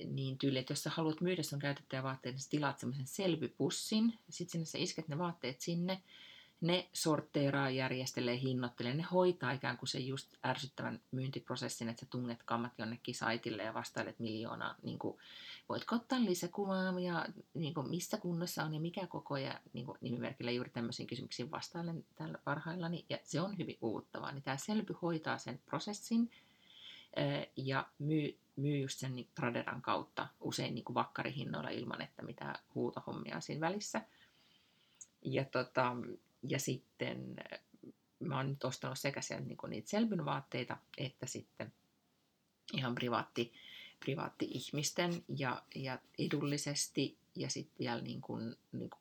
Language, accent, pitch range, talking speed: Finnish, native, 130-170 Hz, 140 wpm